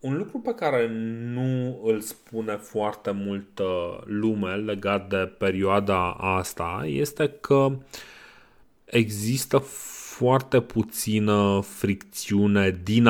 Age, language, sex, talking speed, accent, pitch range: 30-49, Romanian, male, 95 wpm, native, 95-115 Hz